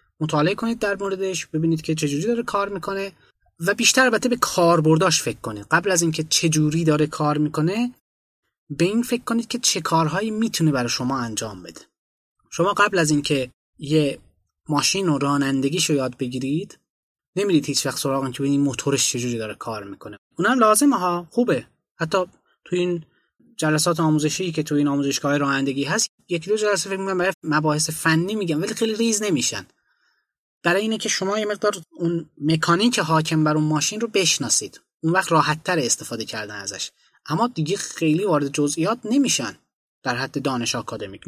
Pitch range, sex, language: 145-210 Hz, male, Persian